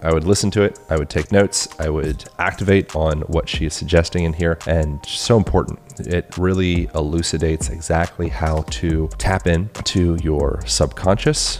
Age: 30-49